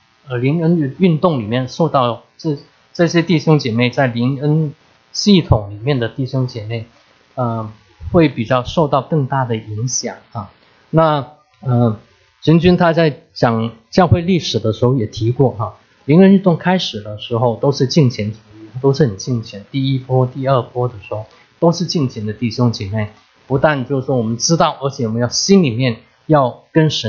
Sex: male